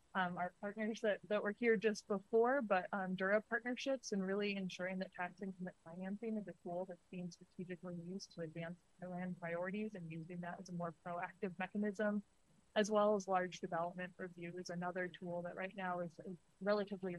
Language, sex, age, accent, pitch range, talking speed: English, female, 20-39, American, 175-200 Hz, 190 wpm